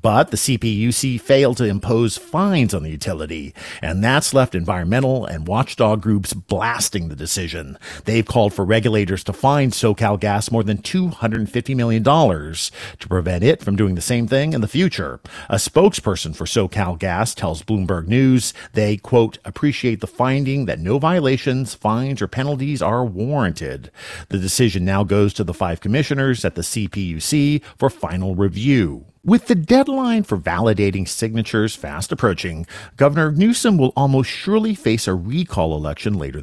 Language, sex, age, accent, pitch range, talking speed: English, male, 50-69, American, 95-135 Hz, 160 wpm